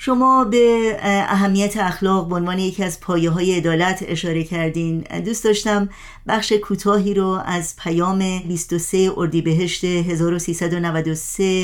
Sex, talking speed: female, 120 wpm